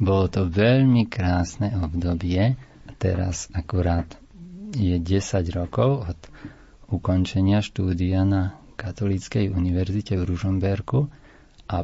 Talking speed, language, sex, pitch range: 95 wpm, Slovak, male, 90-110 Hz